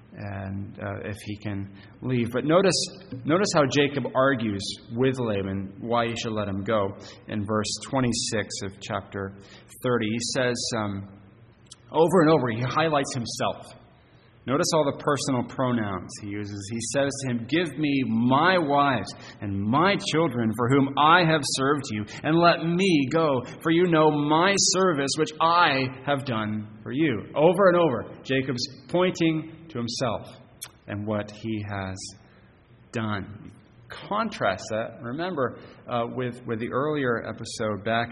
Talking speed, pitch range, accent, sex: 150 wpm, 105-135 Hz, American, male